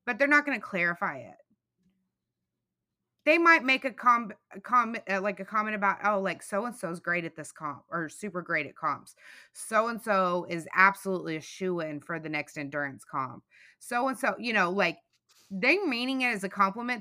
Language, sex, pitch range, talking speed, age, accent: English, female, 175-250 Hz, 185 wpm, 20-39, American